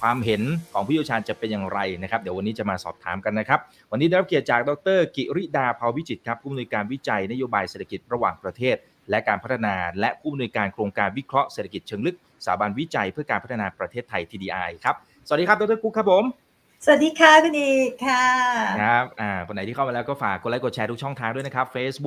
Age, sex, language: 30-49, male, Thai